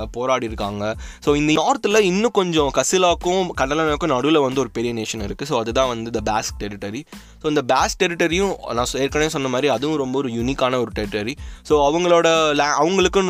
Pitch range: 110-150 Hz